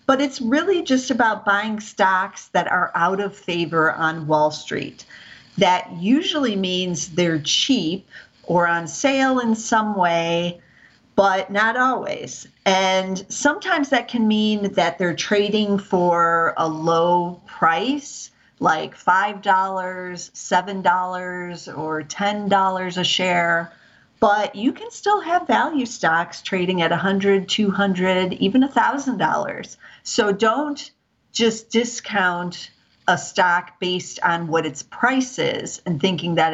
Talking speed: 125 wpm